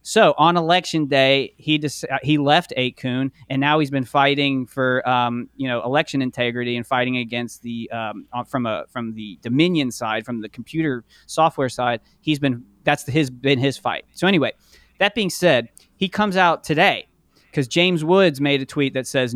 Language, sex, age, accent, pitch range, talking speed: English, male, 30-49, American, 125-160 Hz, 195 wpm